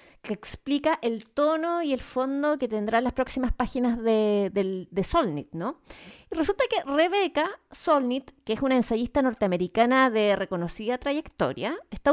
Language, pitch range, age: Spanish, 235-295 Hz, 20-39